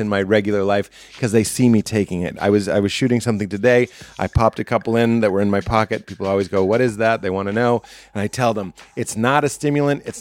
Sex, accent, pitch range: male, American, 110-145 Hz